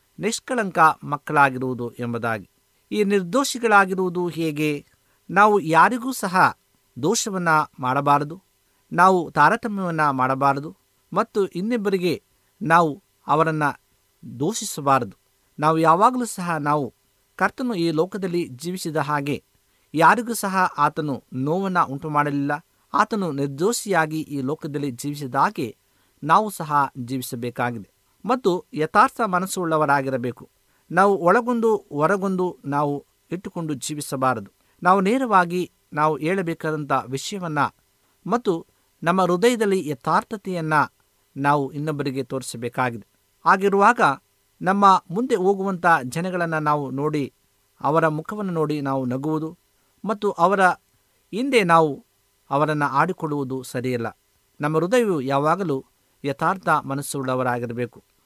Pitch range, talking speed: 135-185 Hz, 90 wpm